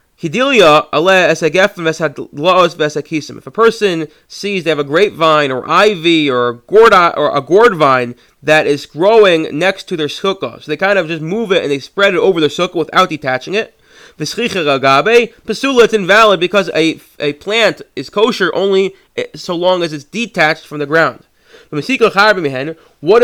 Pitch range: 155-205 Hz